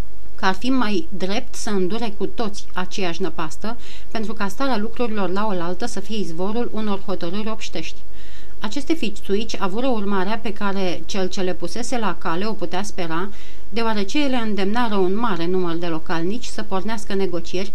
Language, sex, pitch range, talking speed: Romanian, female, 180-225 Hz, 165 wpm